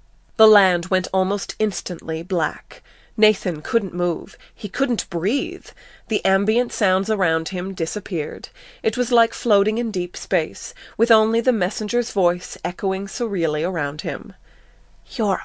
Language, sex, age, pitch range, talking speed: English, female, 30-49, 175-220 Hz, 135 wpm